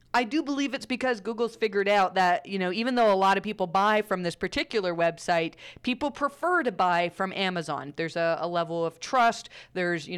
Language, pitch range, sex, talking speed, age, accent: English, 180-245 Hz, female, 210 wpm, 40-59, American